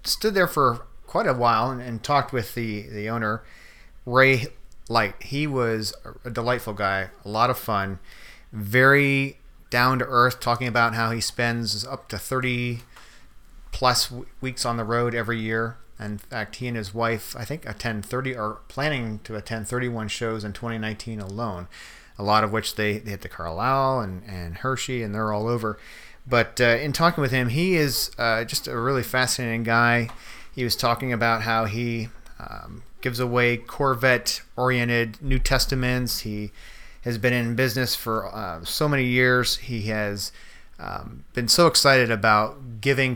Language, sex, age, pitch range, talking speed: English, male, 40-59, 110-125 Hz, 170 wpm